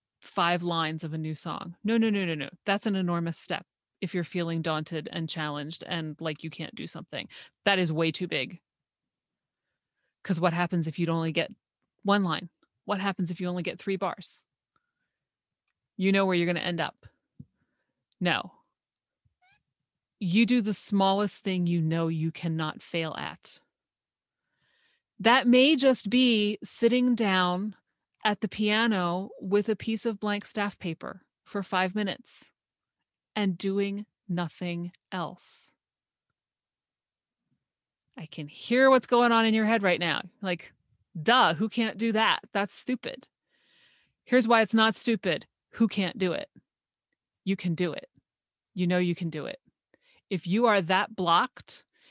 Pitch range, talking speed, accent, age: 170-215 Hz, 155 wpm, American, 30-49